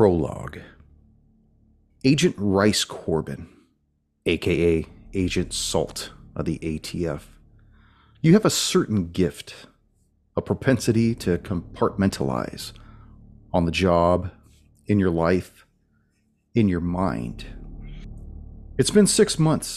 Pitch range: 85-110 Hz